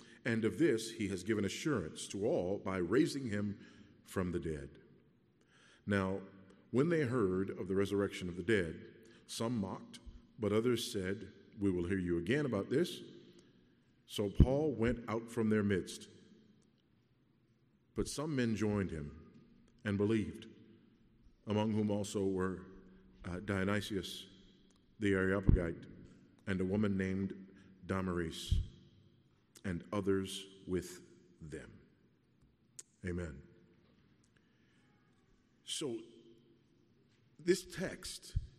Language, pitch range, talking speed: English, 95-120 Hz, 110 wpm